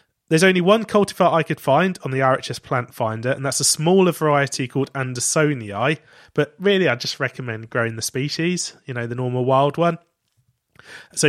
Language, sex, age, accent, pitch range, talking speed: English, male, 20-39, British, 125-160 Hz, 180 wpm